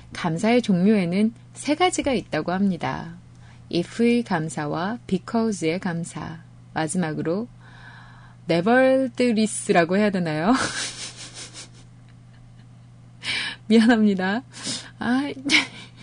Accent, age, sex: native, 20-39, female